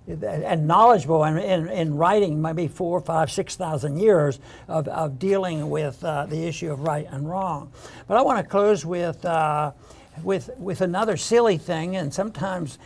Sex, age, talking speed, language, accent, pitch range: male, 60-79, 170 wpm, English, American, 160-205 Hz